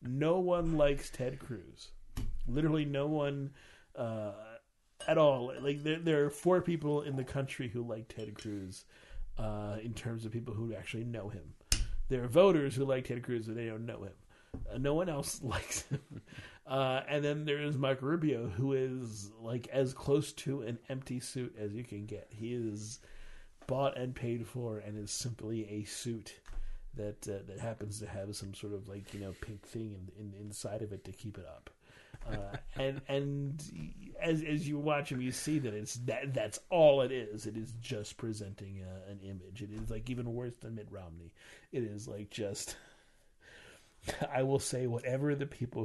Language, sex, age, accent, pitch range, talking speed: English, male, 50-69, American, 105-135 Hz, 190 wpm